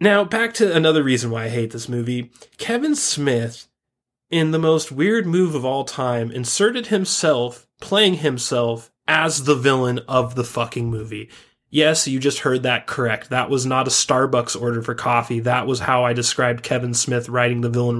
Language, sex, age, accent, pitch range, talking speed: English, male, 20-39, American, 120-160 Hz, 185 wpm